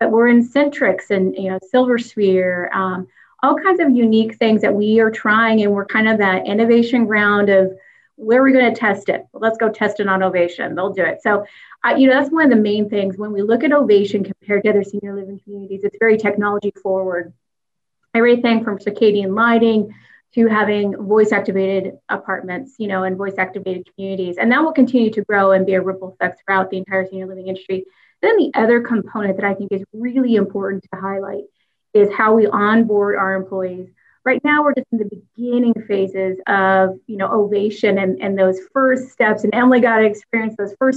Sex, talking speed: female, 210 wpm